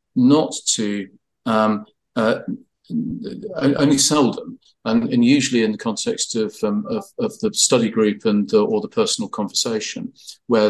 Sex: male